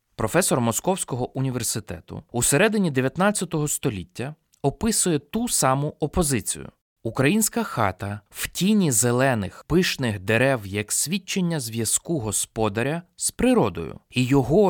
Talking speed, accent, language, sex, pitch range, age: 105 wpm, native, Ukrainian, male, 110-175 Hz, 20-39